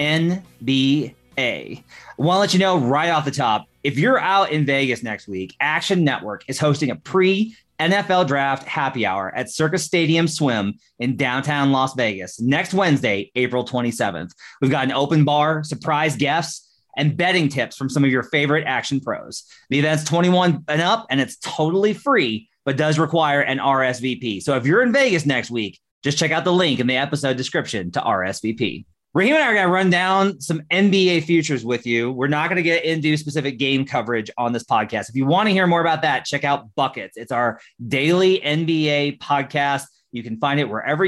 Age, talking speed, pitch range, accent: 30-49, 195 wpm, 130-165 Hz, American